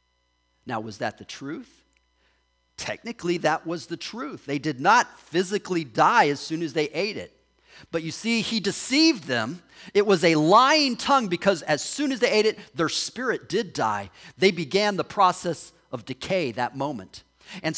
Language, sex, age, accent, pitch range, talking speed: English, male, 40-59, American, 135-190 Hz, 175 wpm